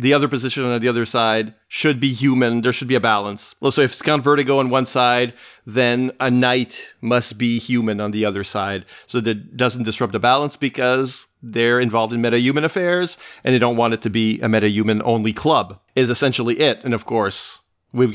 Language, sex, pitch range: English, male, 115-140 Hz